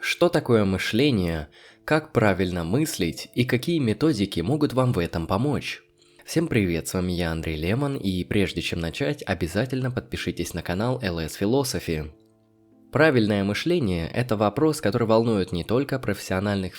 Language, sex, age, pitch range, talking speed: Russian, male, 20-39, 95-125 Hz, 145 wpm